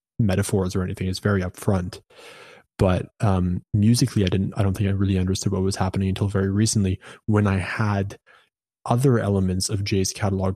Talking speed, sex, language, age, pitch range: 175 wpm, male, English, 20-39, 95-110 Hz